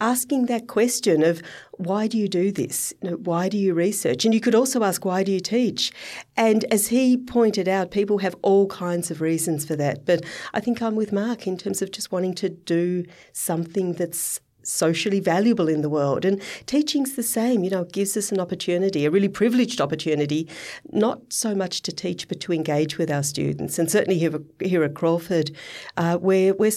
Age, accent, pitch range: 40-59, Australian, 170-230 Hz